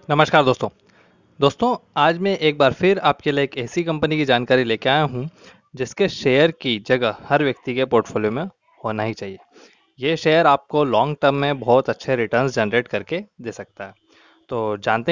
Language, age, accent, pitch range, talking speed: Hindi, 20-39, native, 120-150 Hz, 185 wpm